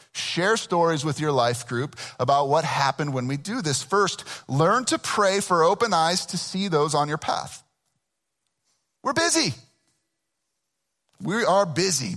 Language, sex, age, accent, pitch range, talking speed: English, male, 40-59, American, 130-180 Hz, 155 wpm